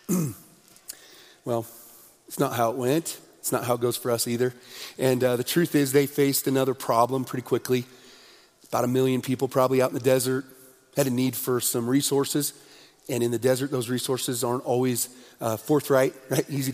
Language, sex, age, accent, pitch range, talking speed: English, male, 40-59, American, 130-200 Hz, 185 wpm